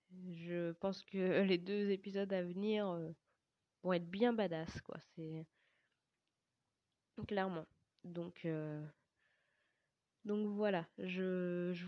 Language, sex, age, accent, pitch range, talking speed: French, female, 20-39, French, 180-220 Hz, 105 wpm